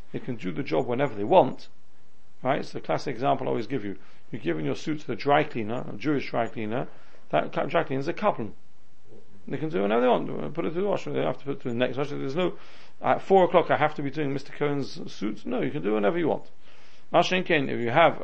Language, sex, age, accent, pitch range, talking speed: English, male, 40-59, British, 125-165 Hz, 270 wpm